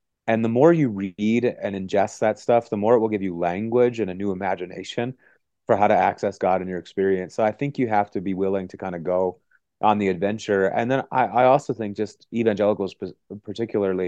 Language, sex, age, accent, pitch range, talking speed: English, male, 30-49, American, 90-110 Hz, 220 wpm